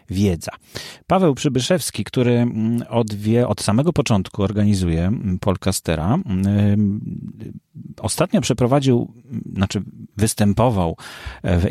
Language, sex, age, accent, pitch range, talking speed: Polish, male, 40-59, native, 100-125 Hz, 85 wpm